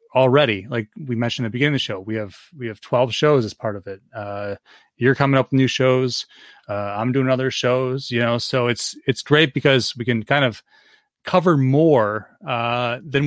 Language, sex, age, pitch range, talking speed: English, male, 30-49, 110-140 Hz, 215 wpm